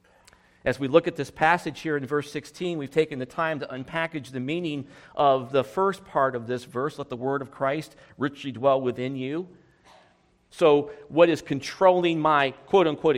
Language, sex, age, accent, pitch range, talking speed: English, male, 40-59, American, 120-150 Hz, 180 wpm